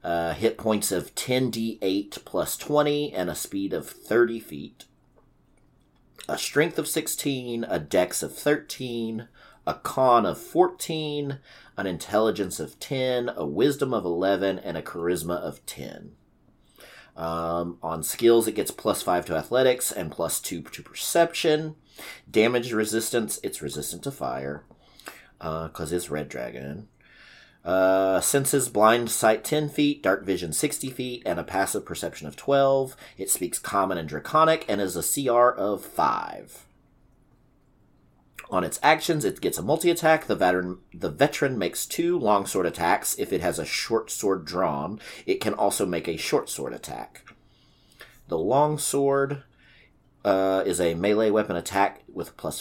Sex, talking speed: male, 145 wpm